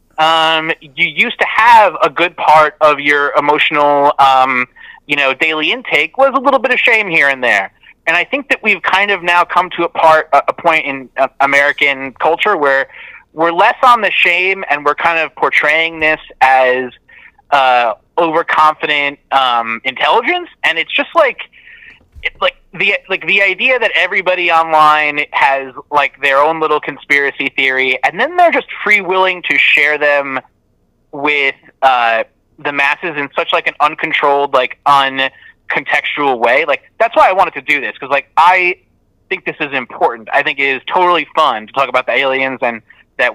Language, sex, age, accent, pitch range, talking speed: English, male, 30-49, American, 140-200 Hz, 175 wpm